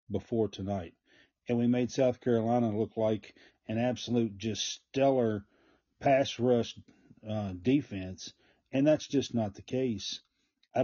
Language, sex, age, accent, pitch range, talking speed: English, male, 40-59, American, 105-130 Hz, 135 wpm